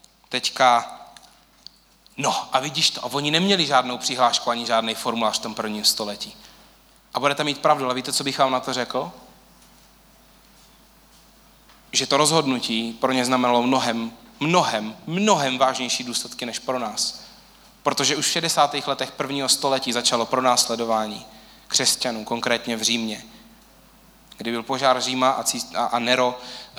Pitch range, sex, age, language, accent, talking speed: 115-130 Hz, male, 20-39, Czech, native, 140 wpm